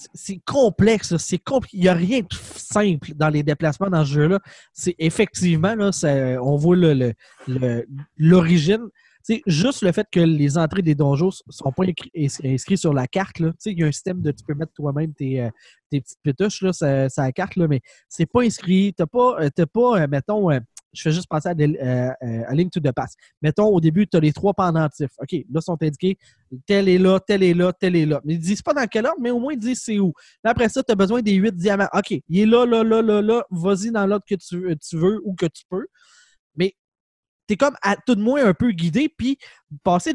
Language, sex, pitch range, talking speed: French, male, 155-210 Hz, 240 wpm